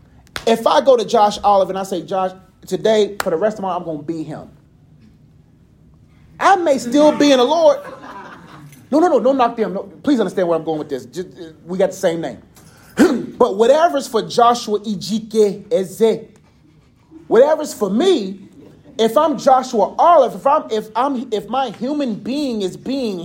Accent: American